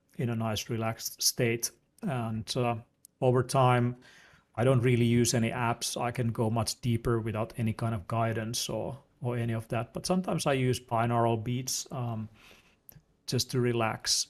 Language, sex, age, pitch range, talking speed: English, male, 40-59, 115-125 Hz, 170 wpm